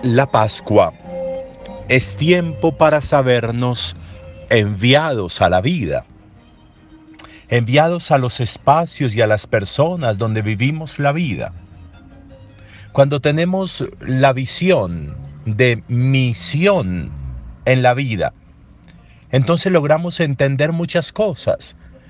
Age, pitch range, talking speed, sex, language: 50-69, 100-150 Hz, 100 wpm, male, Spanish